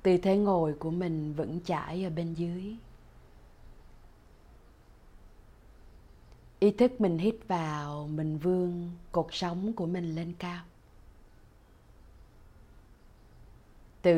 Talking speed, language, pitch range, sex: 100 wpm, Vietnamese, 115-180 Hz, female